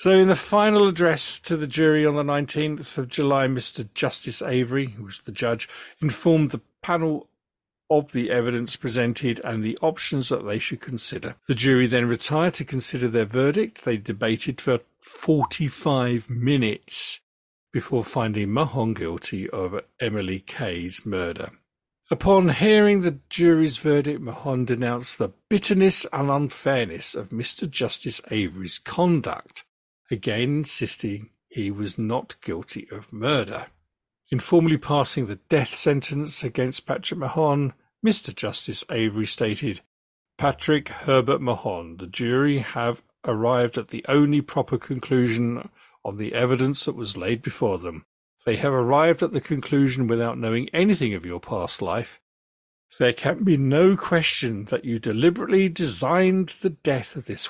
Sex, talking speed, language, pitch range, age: male, 145 wpm, English, 115-155 Hz, 50-69